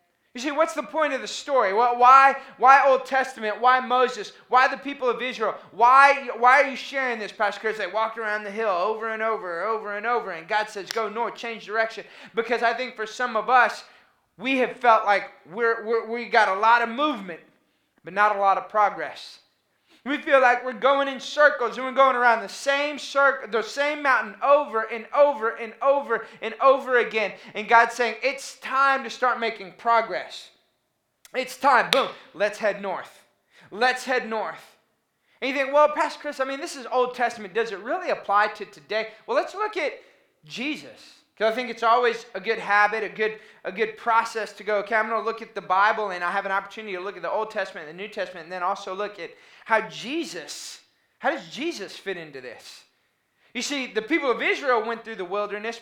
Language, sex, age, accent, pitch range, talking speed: English, male, 20-39, American, 205-260 Hz, 210 wpm